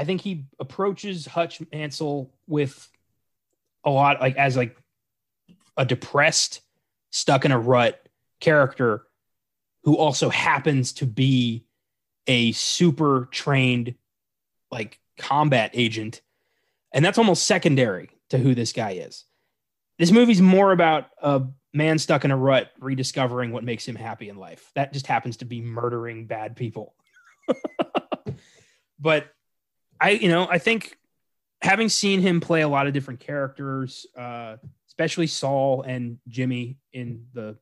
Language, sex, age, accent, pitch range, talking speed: English, male, 20-39, American, 120-150 Hz, 135 wpm